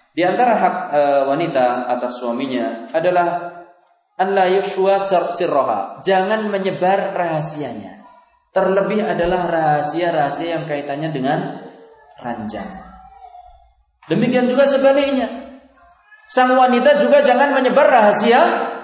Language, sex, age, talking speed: Indonesian, male, 20-39, 85 wpm